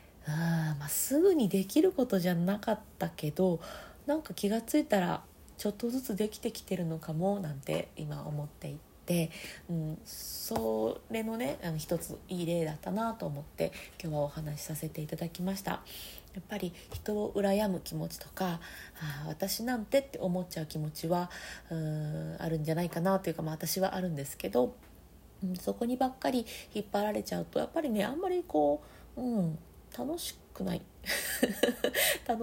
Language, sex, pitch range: Japanese, female, 160-215 Hz